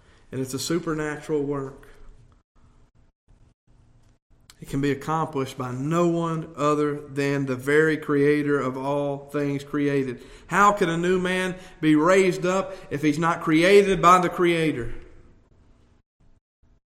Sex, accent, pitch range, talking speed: male, American, 140-185 Hz, 130 wpm